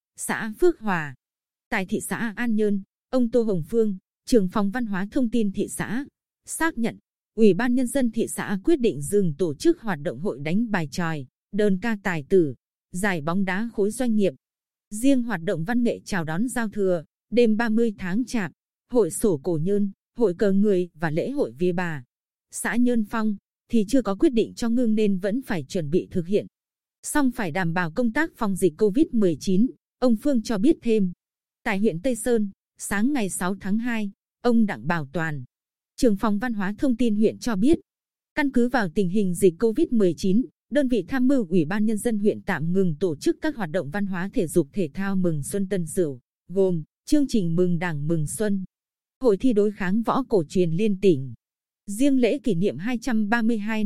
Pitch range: 185-235 Hz